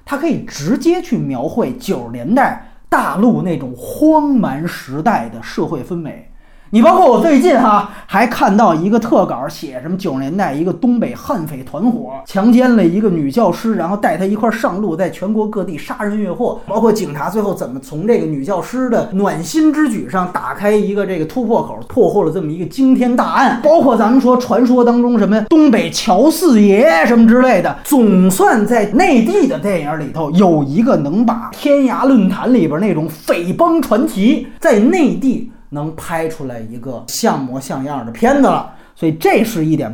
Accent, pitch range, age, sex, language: native, 185-255 Hz, 30-49, male, Chinese